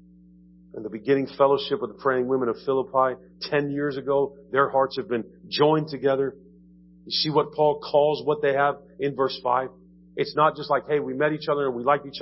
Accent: American